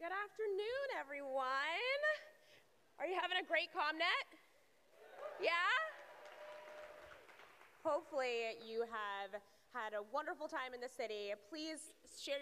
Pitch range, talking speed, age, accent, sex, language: 215-300 Hz, 105 wpm, 20-39, American, female, English